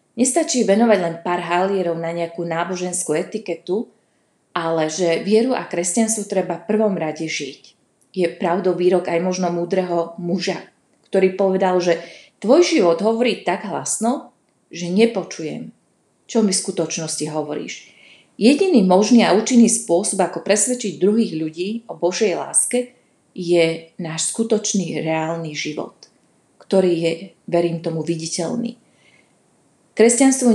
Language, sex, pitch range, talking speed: Slovak, female, 165-215 Hz, 125 wpm